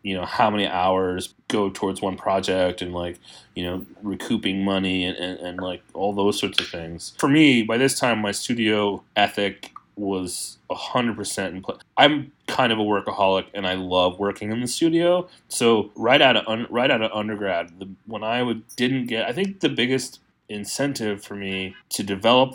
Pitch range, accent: 95-115 Hz, American